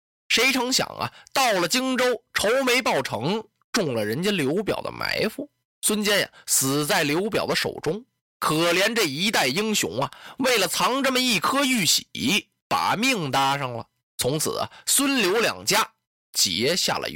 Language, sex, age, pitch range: Chinese, male, 20-39, 165-255 Hz